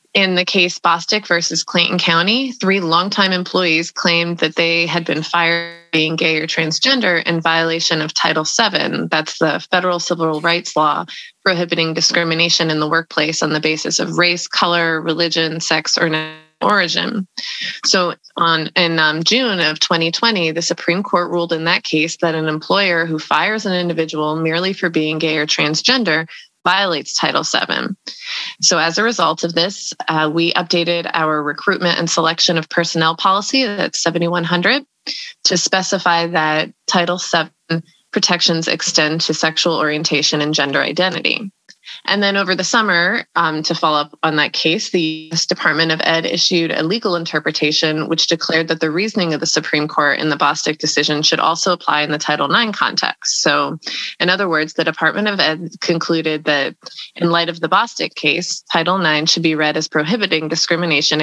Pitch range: 155-180 Hz